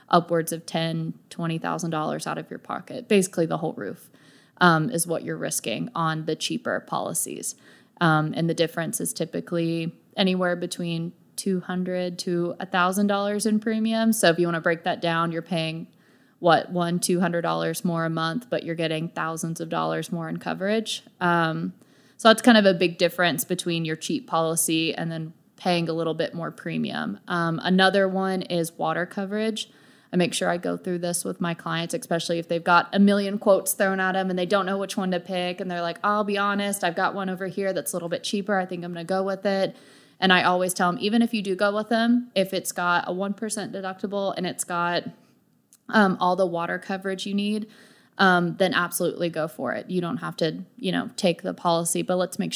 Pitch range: 170-195 Hz